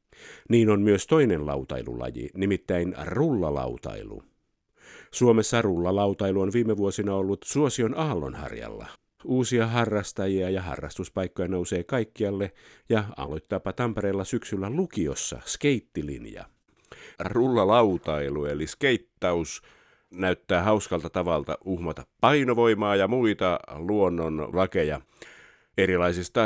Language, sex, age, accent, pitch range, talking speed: Finnish, male, 50-69, native, 85-110 Hz, 90 wpm